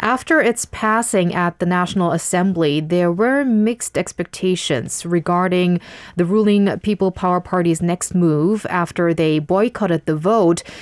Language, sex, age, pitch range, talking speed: English, female, 20-39, 170-210 Hz, 135 wpm